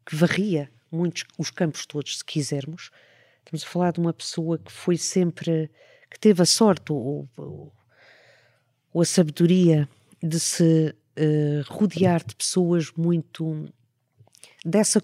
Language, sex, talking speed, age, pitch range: Portuguese, female, 130 wpm, 50-69, 145-185 Hz